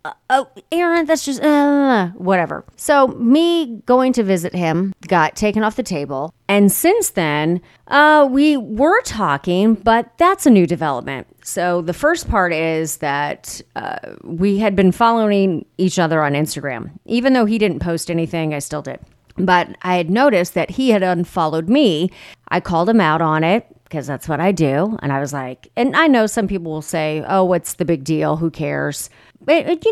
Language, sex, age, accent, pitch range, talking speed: English, female, 30-49, American, 160-220 Hz, 190 wpm